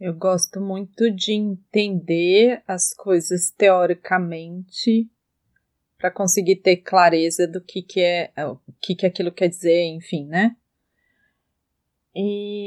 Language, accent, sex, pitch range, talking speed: Portuguese, Brazilian, female, 165-195 Hz, 120 wpm